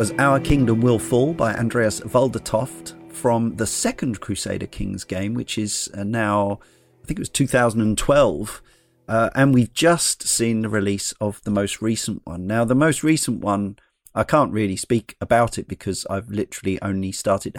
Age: 40-59